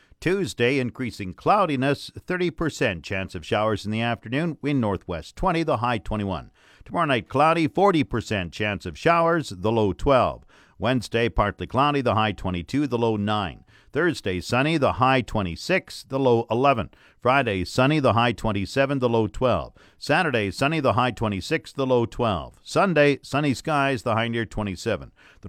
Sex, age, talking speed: male, 50-69, 160 wpm